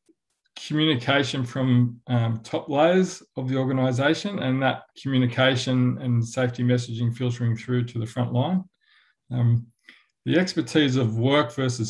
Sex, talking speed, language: male, 130 wpm, English